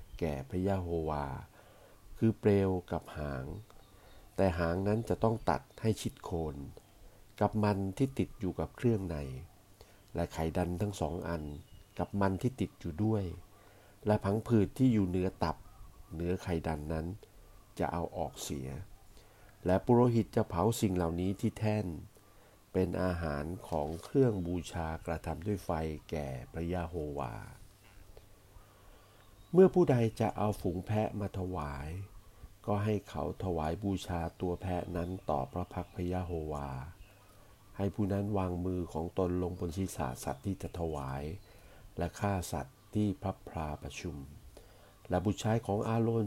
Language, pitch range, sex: Thai, 85-105 Hz, male